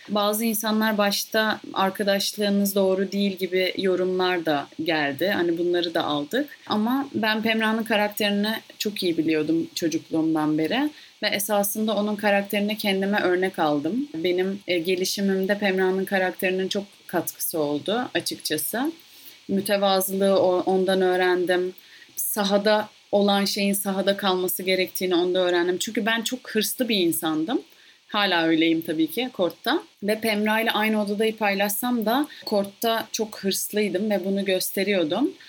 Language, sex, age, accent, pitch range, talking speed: Turkish, female, 30-49, native, 180-215 Hz, 125 wpm